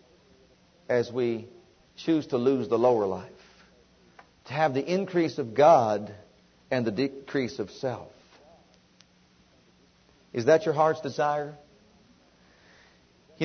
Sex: male